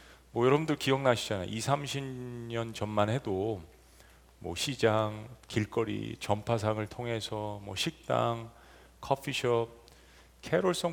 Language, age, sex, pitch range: Korean, 40-59, male, 90-125 Hz